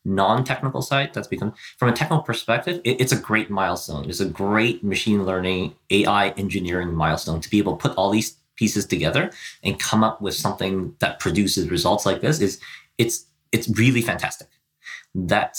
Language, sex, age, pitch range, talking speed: English, male, 30-49, 100-130 Hz, 170 wpm